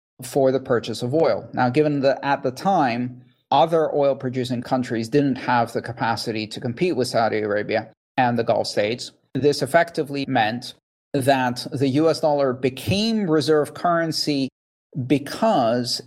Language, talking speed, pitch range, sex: English, 145 wpm, 125-150 Hz, male